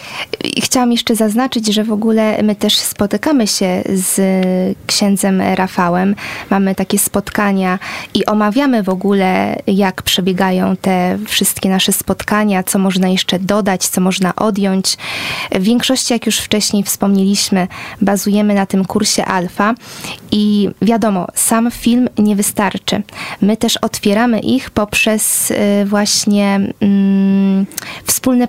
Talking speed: 120 wpm